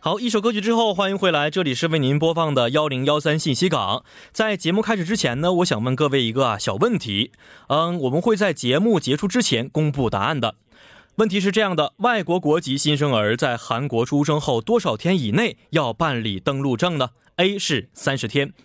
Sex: male